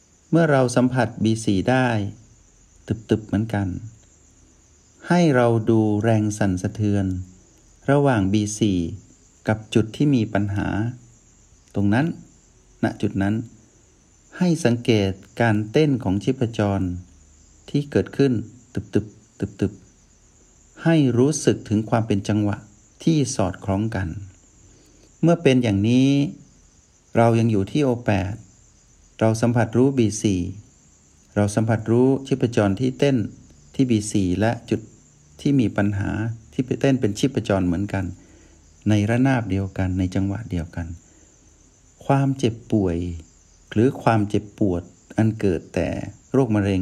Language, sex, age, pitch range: Thai, male, 60-79, 95-120 Hz